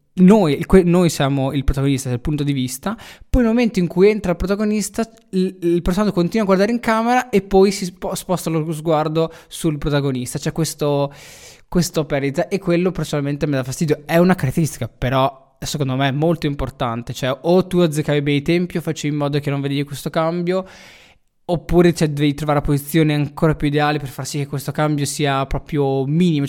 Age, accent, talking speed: 20-39, native, 195 wpm